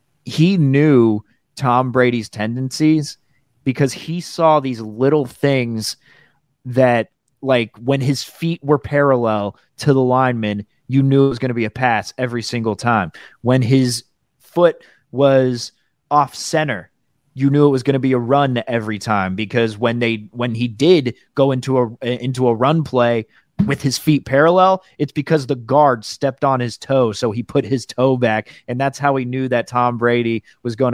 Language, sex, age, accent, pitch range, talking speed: English, male, 30-49, American, 120-145 Hz, 175 wpm